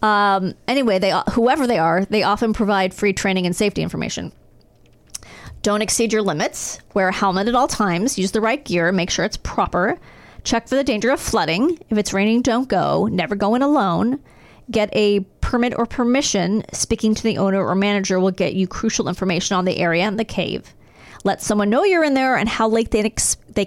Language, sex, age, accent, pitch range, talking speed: English, female, 30-49, American, 195-240 Hz, 205 wpm